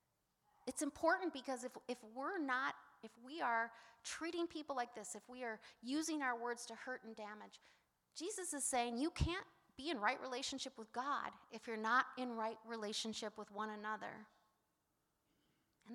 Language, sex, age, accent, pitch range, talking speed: English, female, 30-49, American, 220-280 Hz, 170 wpm